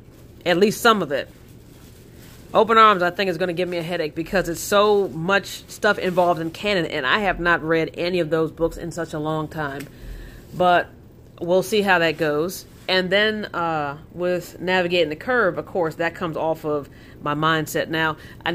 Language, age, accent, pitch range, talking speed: English, 30-49, American, 160-195 Hz, 195 wpm